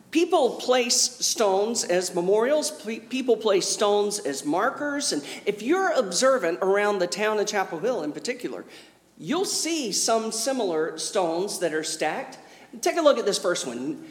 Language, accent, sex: English, American, male